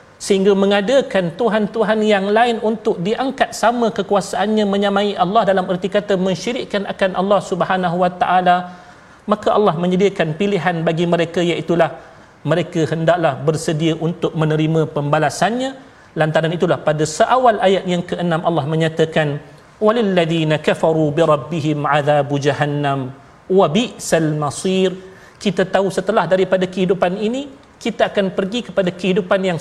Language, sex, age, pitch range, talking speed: Malayalam, male, 40-59, 175-225 Hz, 130 wpm